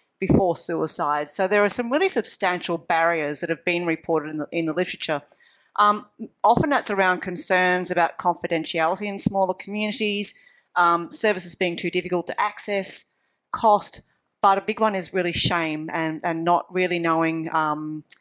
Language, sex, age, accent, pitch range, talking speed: English, female, 40-59, Australian, 160-205 Hz, 160 wpm